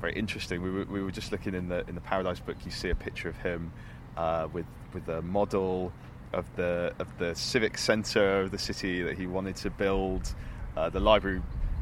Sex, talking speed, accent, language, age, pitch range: male, 215 wpm, British, English, 20-39, 80-100 Hz